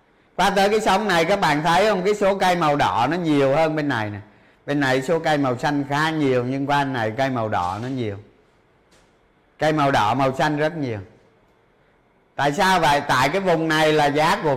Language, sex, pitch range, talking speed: Vietnamese, male, 145-205 Hz, 220 wpm